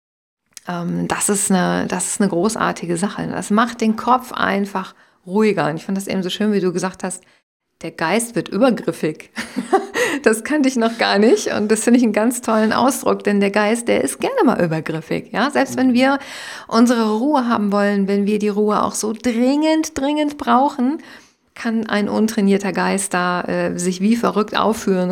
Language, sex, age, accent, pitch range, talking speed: German, female, 50-69, German, 190-235 Hz, 185 wpm